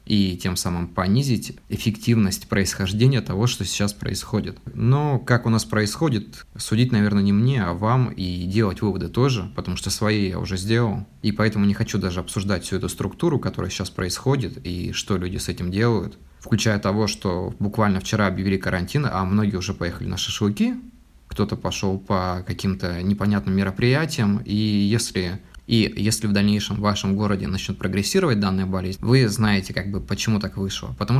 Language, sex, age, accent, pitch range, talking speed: Russian, male, 20-39, native, 95-110 Hz, 170 wpm